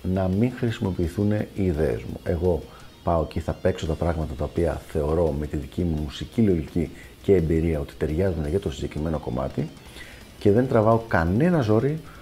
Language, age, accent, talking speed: Greek, 40-59, native, 170 wpm